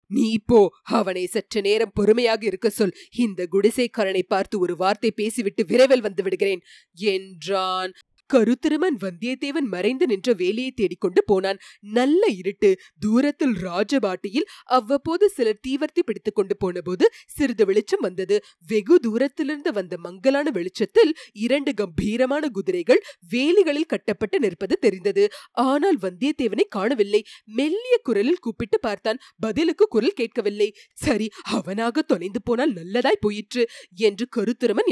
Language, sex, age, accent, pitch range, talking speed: Tamil, female, 20-39, native, 205-315 Hz, 120 wpm